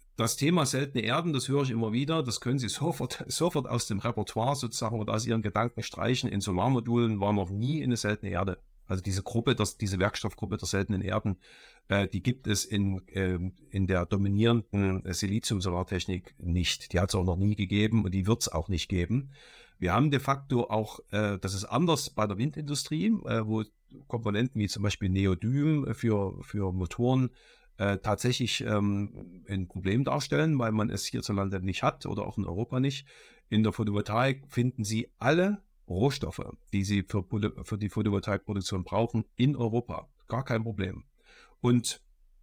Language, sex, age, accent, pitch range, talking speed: German, male, 50-69, German, 95-125 Hz, 175 wpm